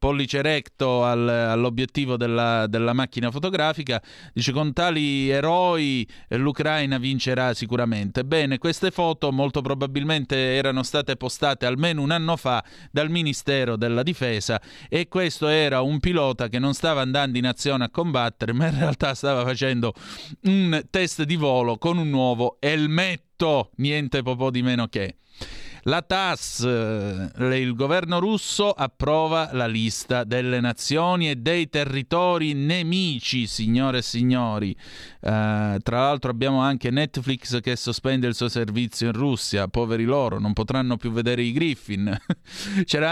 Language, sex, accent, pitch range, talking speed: Italian, male, native, 125-160 Hz, 140 wpm